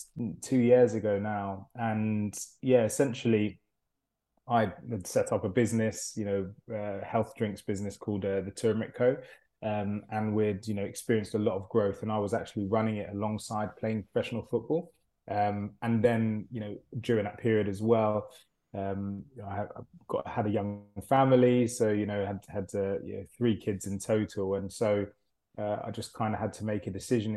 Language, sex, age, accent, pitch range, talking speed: English, male, 20-39, British, 105-115 Hz, 180 wpm